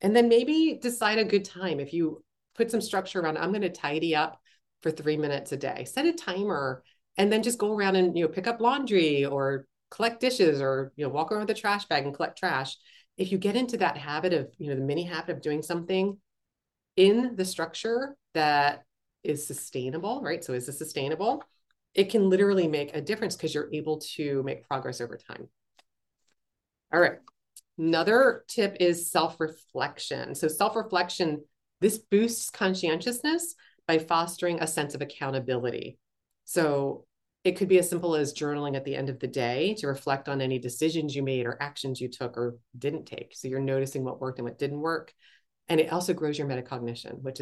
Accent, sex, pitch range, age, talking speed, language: American, female, 135-190 Hz, 30-49, 195 wpm, English